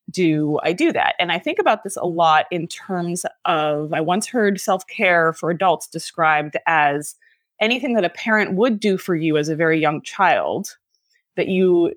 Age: 20-39